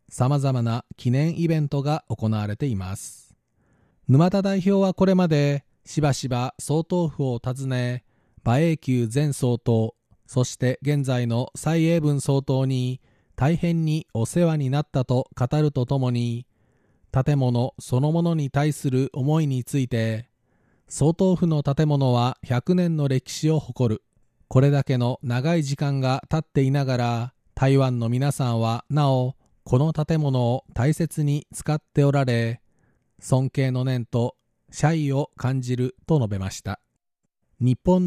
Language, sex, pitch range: Japanese, male, 125-150 Hz